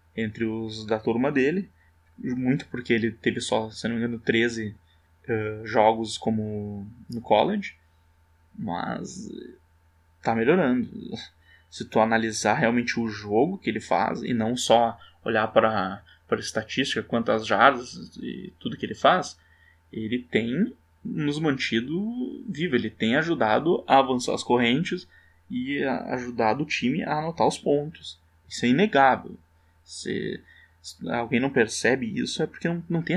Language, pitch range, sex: Portuguese, 100-150 Hz, male